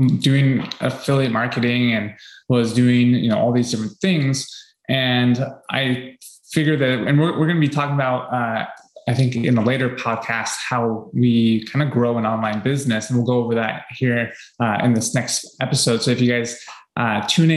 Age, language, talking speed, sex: 20-39, English, 190 wpm, male